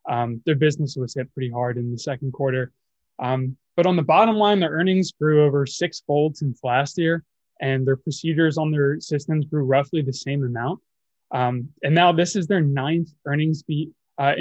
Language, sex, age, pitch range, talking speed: English, male, 20-39, 140-165 Hz, 195 wpm